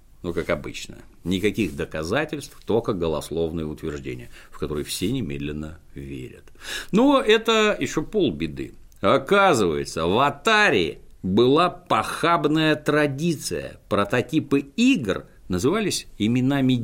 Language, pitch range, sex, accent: Russian, 80-115 Hz, male, native